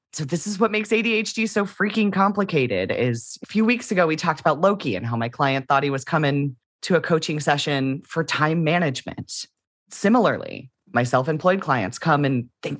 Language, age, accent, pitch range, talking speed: English, 30-49, American, 135-195 Hz, 190 wpm